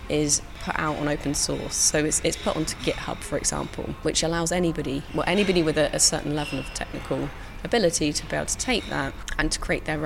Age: 30-49